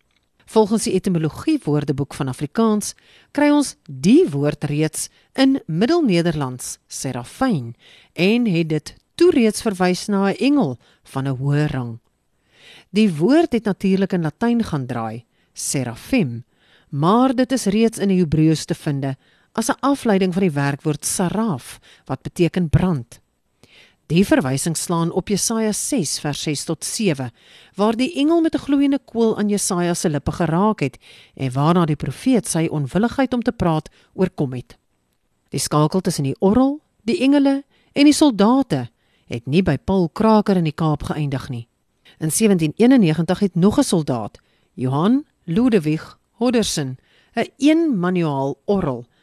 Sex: female